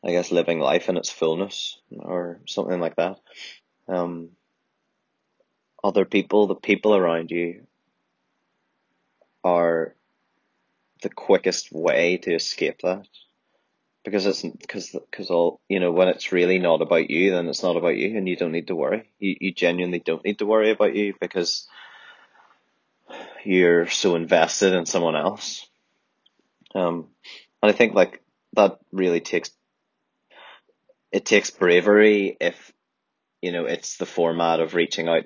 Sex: male